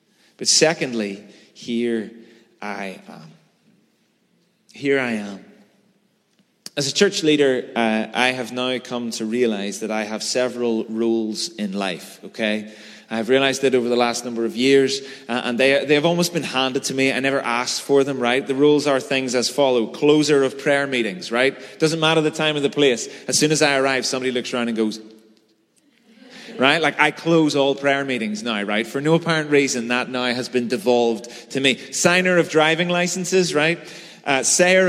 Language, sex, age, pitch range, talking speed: English, male, 30-49, 120-150 Hz, 185 wpm